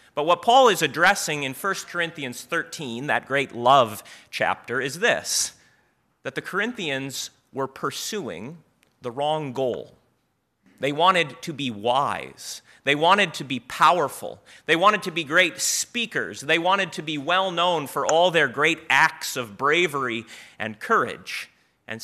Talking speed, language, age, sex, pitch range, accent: 145 wpm, English, 30-49, male, 135-180 Hz, American